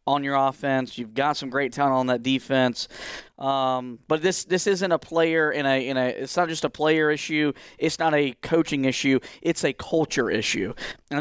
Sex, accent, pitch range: male, American, 140-165 Hz